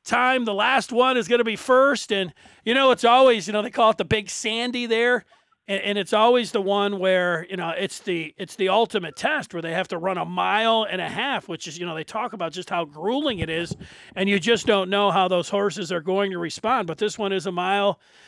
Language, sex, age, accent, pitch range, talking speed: English, male, 40-59, American, 190-235 Hz, 255 wpm